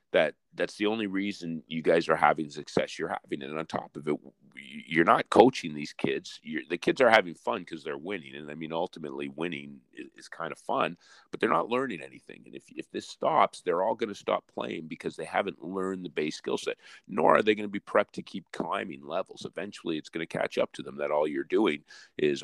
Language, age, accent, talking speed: English, 40-59, American, 240 wpm